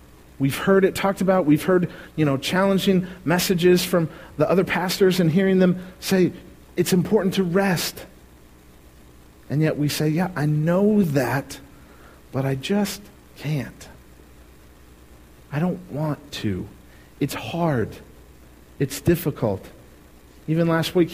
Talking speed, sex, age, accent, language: 130 wpm, male, 40-59, American, English